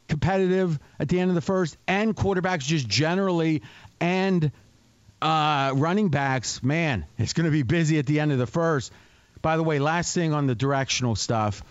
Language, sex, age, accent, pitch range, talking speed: English, male, 40-59, American, 120-160 Hz, 185 wpm